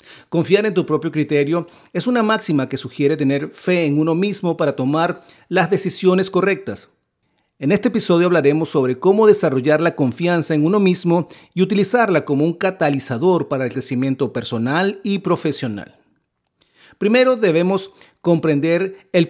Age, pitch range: 40-59, 150-190 Hz